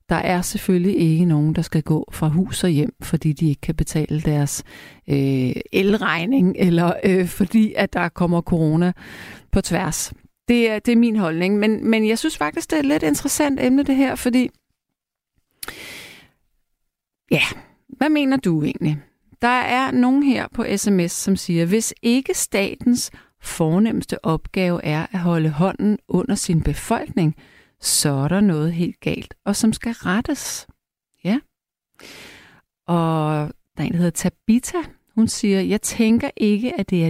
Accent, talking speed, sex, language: native, 165 wpm, female, Danish